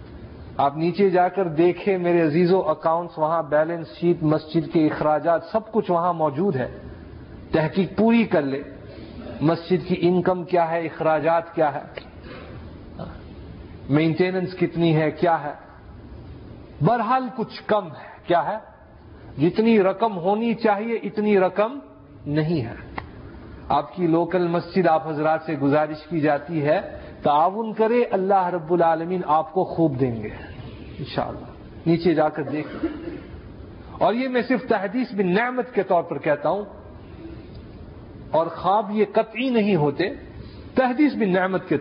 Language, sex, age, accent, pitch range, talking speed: English, male, 50-69, Indian, 155-200 Hz, 135 wpm